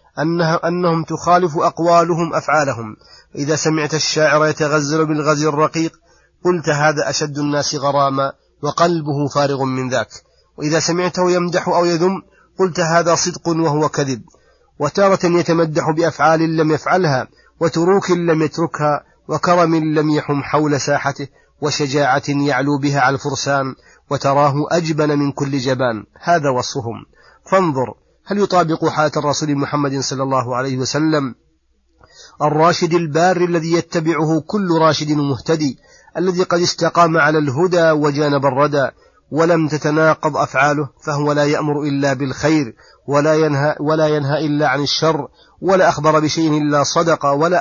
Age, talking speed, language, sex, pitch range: 30-49, 125 wpm, Arabic, male, 145-165 Hz